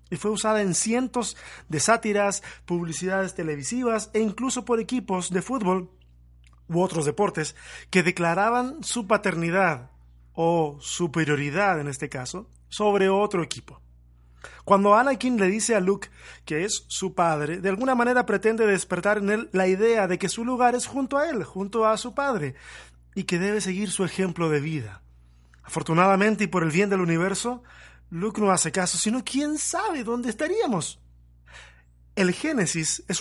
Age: 30-49